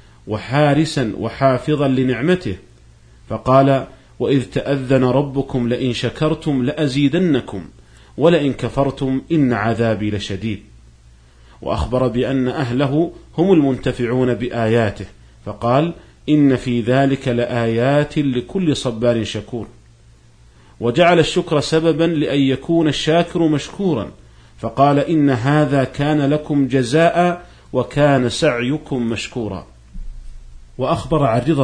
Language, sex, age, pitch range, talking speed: Arabic, male, 40-59, 110-145 Hz, 90 wpm